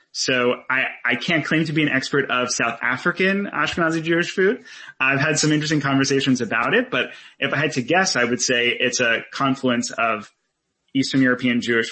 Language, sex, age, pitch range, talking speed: English, male, 30-49, 110-130 Hz, 190 wpm